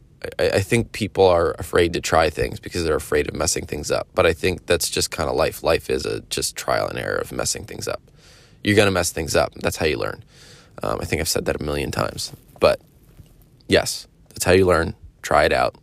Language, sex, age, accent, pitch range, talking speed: English, male, 20-39, American, 90-115 Hz, 240 wpm